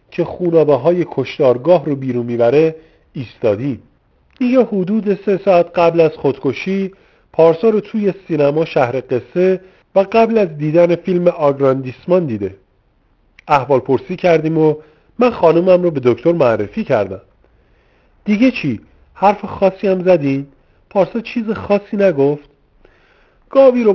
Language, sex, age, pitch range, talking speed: English, male, 50-69, 145-195 Hz, 130 wpm